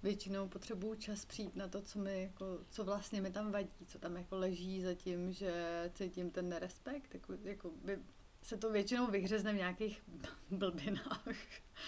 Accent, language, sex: native, Czech, female